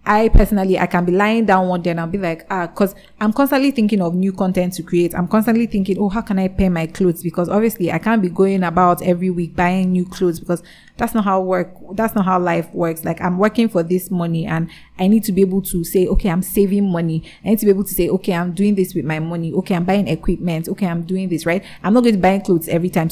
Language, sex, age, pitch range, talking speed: English, female, 30-49, 170-200 Hz, 270 wpm